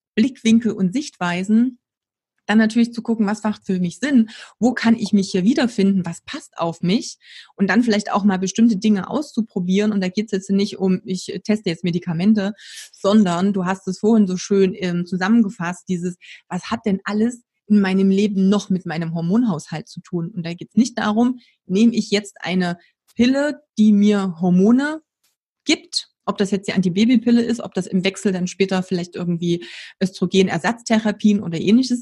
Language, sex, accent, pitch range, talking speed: German, female, German, 180-220 Hz, 180 wpm